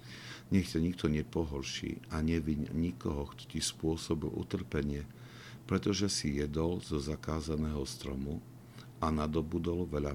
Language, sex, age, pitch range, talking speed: Slovak, male, 50-69, 75-100 Hz, 110 wpm